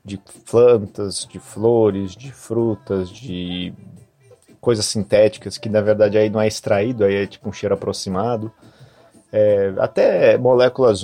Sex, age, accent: male, 30-49, Brazilian